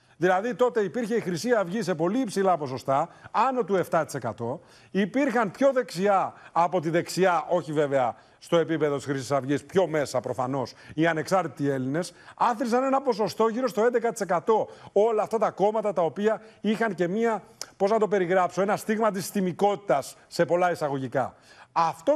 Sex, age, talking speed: male, 40-59, 160 wpm